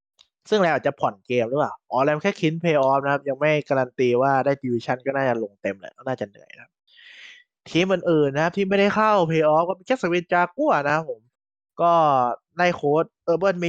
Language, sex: Thai, male